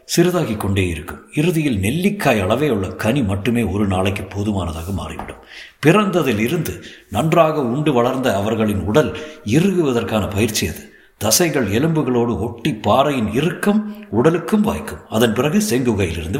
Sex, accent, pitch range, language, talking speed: male, native, 105-150 Hz, Tamil, 120 wpm